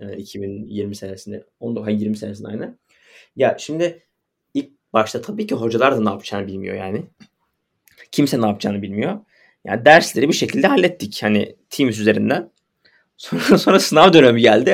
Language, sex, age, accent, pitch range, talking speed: Turkish, male, 20-39, native, 110-165 Hz, 145 wpm